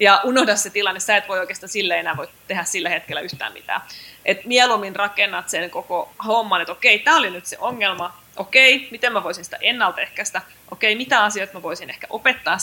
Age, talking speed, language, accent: 20-39, 200 wpm, Finnish, native